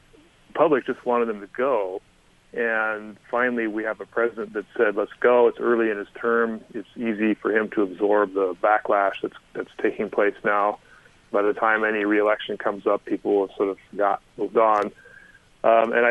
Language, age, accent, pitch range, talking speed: English, 30-49, American, 100-115 Hz, 185 wpm